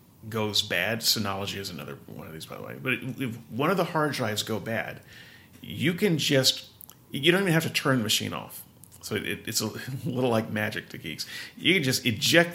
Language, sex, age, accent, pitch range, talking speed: English, male, 40-59, American, 105-135 Hz, 210 wpm